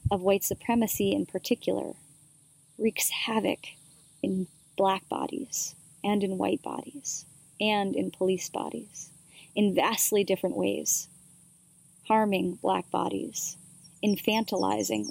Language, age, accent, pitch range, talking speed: English, 30-49, American, 170-235 Hz, 105 wpm